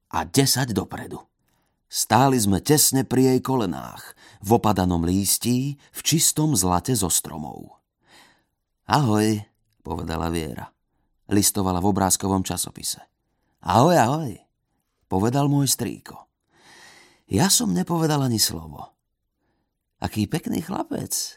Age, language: 30-49, Slovak